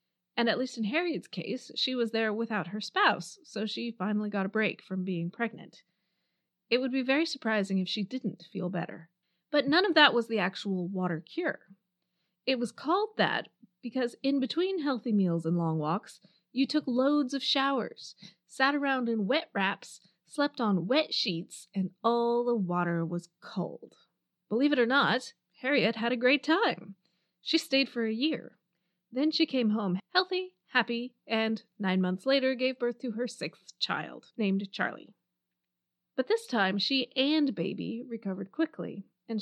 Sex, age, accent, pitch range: female, 20-39, American, 185-260 Hz